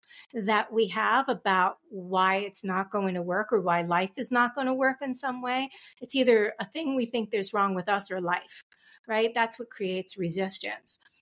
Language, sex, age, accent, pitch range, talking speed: English, female, 40-59, American, 200-260 Hz, 205 wpm